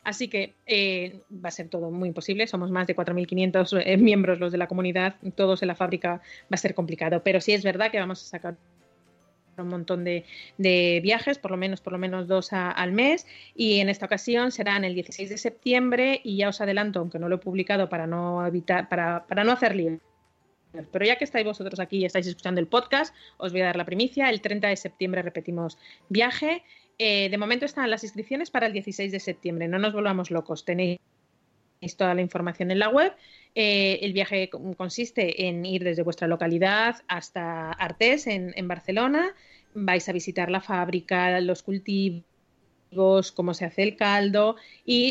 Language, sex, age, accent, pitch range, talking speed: Spanish, female, 30-49, Spanish, 180-210 Hz, 195 wpm